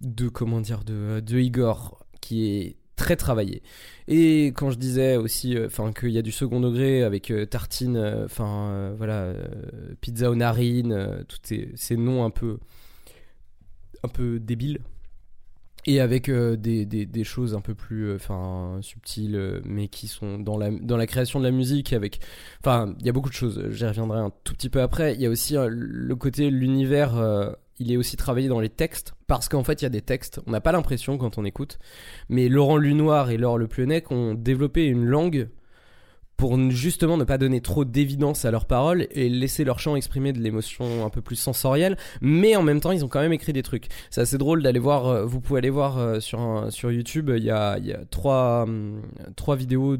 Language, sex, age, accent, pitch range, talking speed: French, male, 20-39, French, 110-135 Hz, 205 wpm